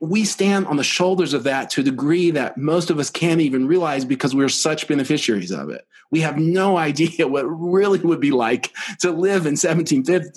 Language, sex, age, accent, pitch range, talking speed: English, male, 40-59, American, 125-170 Hz, 215 wpm